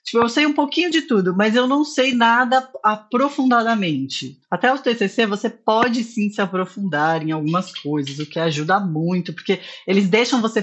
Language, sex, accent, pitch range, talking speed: Portuguese, female, Brazilian, 180-235 Hz, 180 wpm